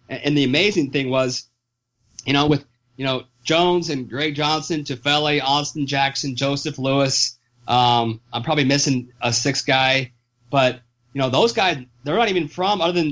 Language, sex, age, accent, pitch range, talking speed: English, male, 30-49, American, 125-160 Hz, 170 wpm